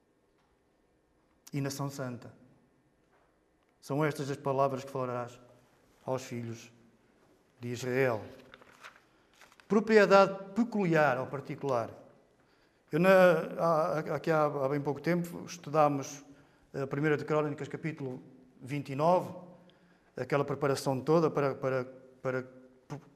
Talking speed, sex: 100 wpm, male